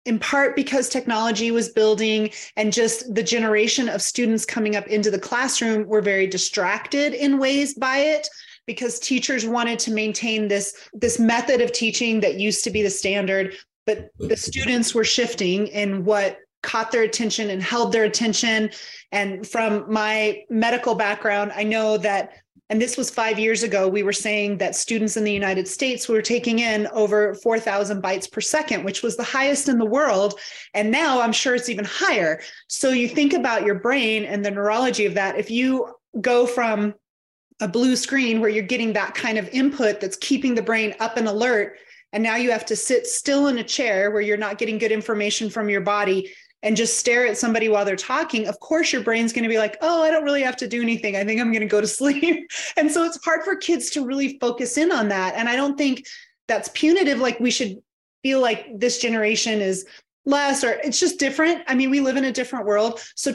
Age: 30-49